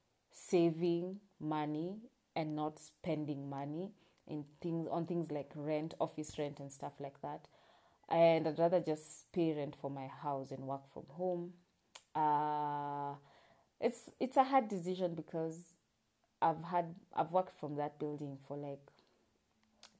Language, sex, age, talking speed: English, female, 20-39, 145 wpm